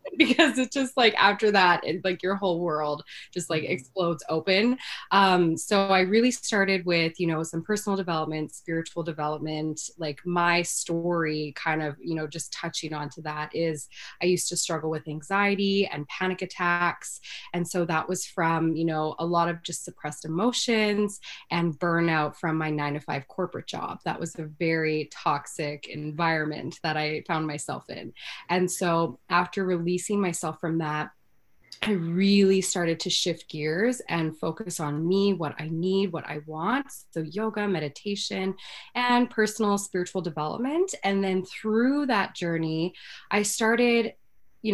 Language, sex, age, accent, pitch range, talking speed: English, female, 20-39, American, 160-195 Hz, 160 wpm